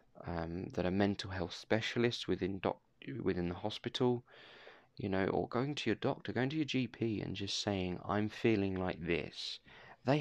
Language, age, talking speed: English, 20-39, 165 wpm